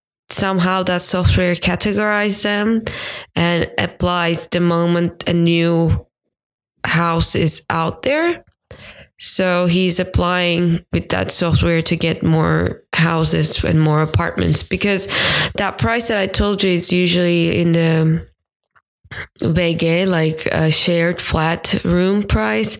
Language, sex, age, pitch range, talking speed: English, female, 20-39, 165-195 Hz, 120 wpm